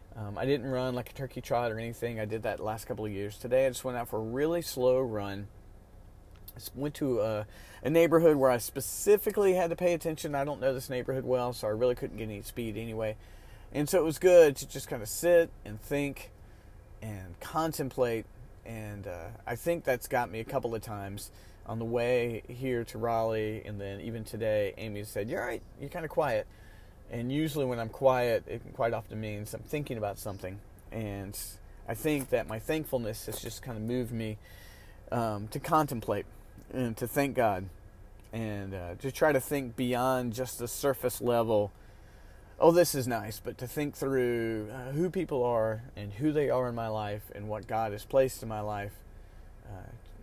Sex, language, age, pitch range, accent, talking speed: male, English, 40-59, 105-130 Hz, American, 200 wpm